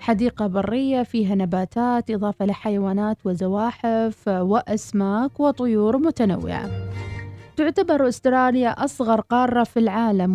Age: 30-49